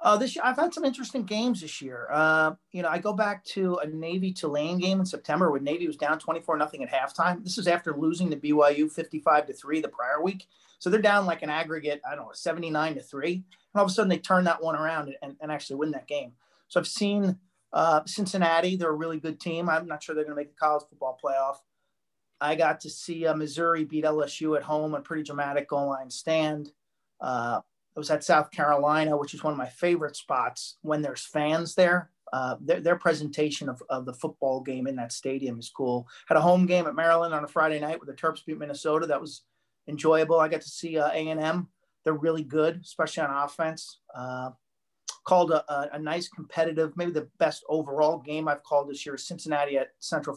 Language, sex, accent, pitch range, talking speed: English, male, American, 145-170 Hz, 225 wpm